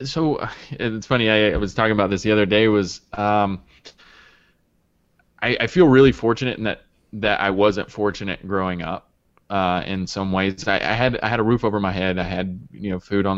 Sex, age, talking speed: male, 20-39, 210 wpm